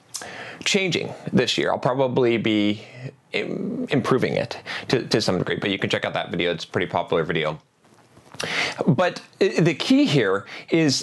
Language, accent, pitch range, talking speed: English, American, 130-170 Hz, 160 wpm